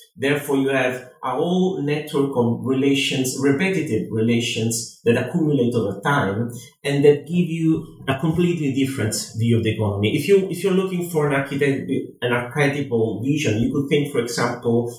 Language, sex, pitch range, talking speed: English, male, 115-145 Hz, 155 wpm